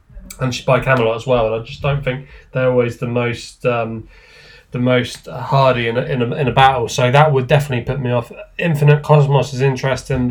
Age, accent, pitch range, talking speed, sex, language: 20-39, British, 115-135 Hz, 215 wpm, male, English